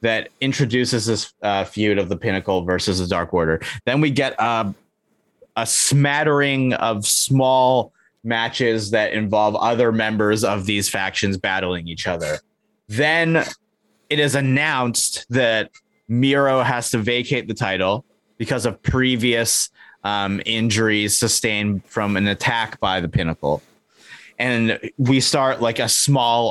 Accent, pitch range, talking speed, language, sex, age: American, 100-130 Hz, 135 wpm, English, male, 30-49